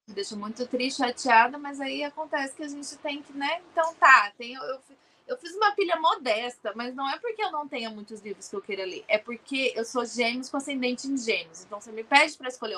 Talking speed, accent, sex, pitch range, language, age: 245 wpm, Brazilian, female, 230-315 Hz, Portuguese, 20-39